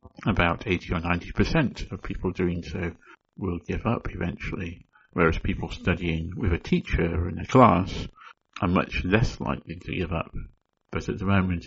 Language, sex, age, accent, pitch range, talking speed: English, male, 60-79, British, 85-105 Hz, 165 wpm